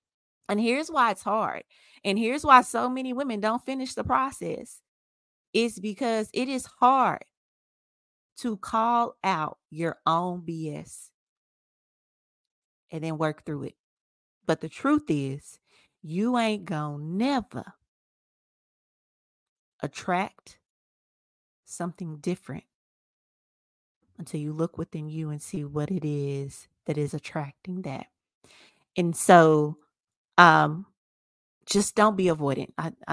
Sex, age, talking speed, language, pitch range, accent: female, 30-49, 120 wpm, English, 155-215 Hz, American